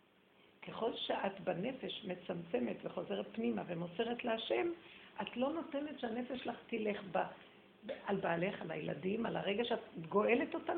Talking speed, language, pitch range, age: 135 wpm, Hebrew, 210-275 Hz, 50-69